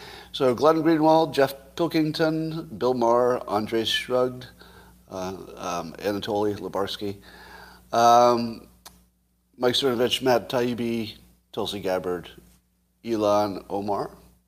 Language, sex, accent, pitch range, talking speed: English, male, American, 90-135 Hz, 90 wpm